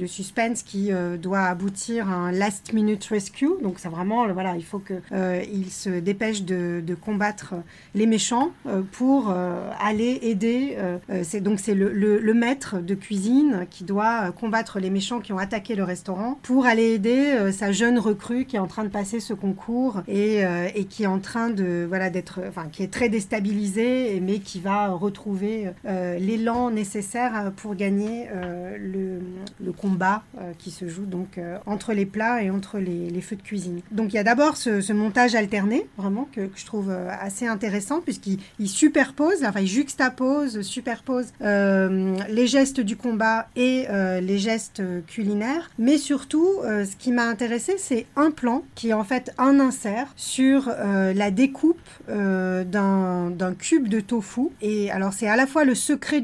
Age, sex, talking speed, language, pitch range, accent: 30-49, female, 190 wpm, French, 190-235 Hz, French